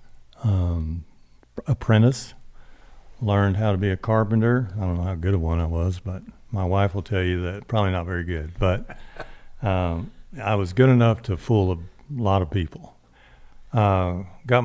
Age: 60-79